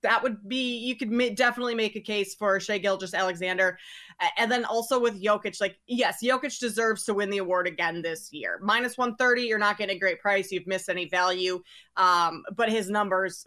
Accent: American